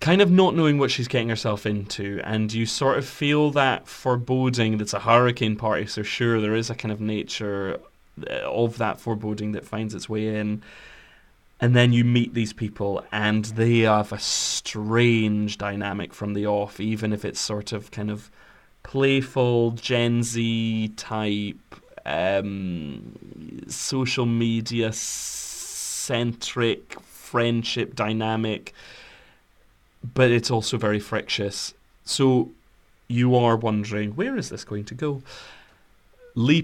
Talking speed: 140 wpm